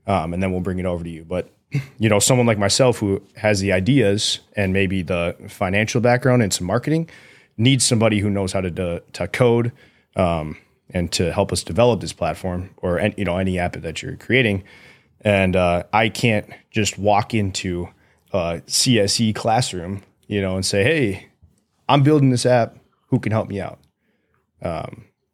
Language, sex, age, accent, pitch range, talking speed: English, male, 20-39, American, 95-115 Hz, 180 wpm